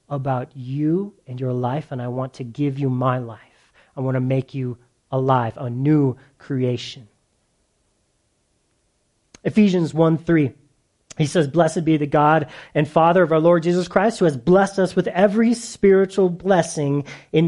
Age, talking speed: 30-49, 160 wpm